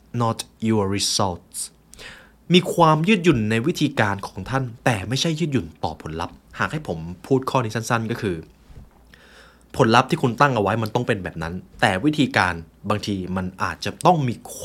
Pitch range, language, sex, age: 95-135 Hz, Thai, male, 20-39